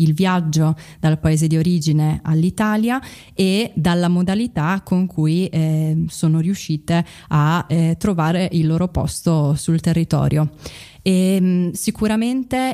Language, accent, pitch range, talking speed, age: Italian, native, 160-180 Hz, 125 wpm, 20-39